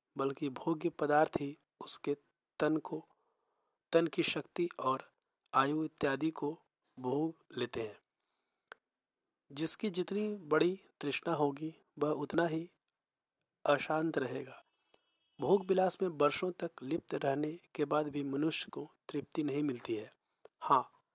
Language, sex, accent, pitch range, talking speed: Hindi, male, native, 145-170 Hz, 125 wpm